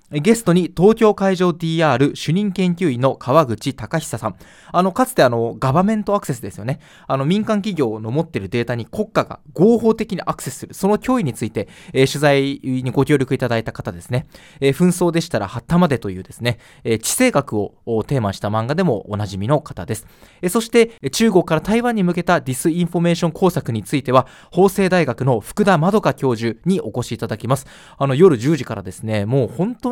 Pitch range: 125-180 Hz